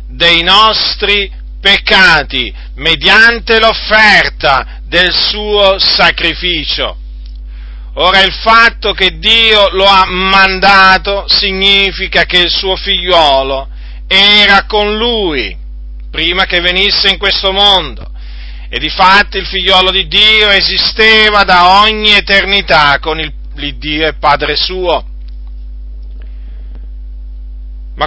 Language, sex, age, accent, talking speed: Italian, male, 40-59, native, 105 wpm